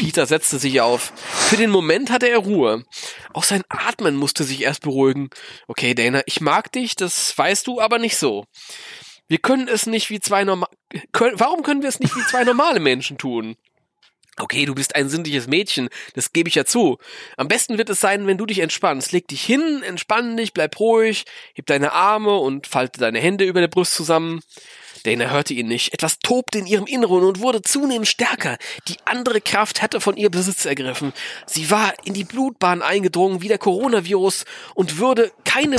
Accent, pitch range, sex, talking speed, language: German, 145-220 Hz, male, 195 wpm, German